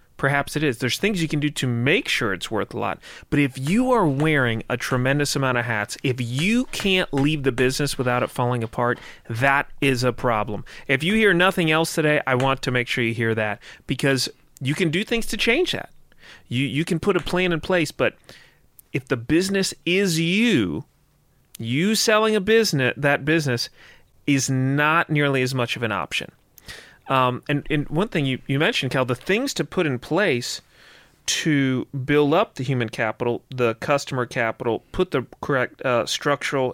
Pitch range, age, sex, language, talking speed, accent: 125-165 Hz, 30-49, male, English, 195 wpm, American